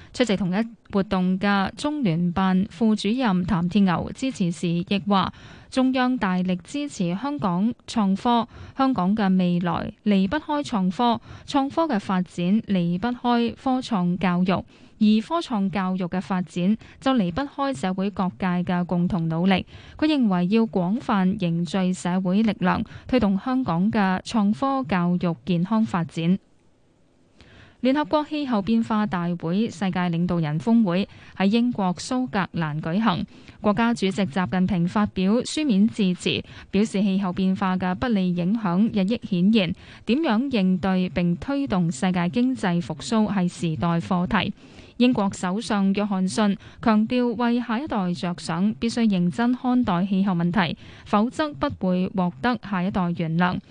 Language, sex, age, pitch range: Chinese, female, 10-29, 180-230 Hz